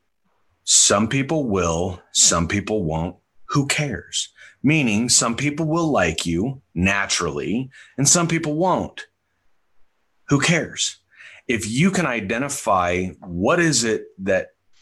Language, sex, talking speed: Italian, male, 115 wpm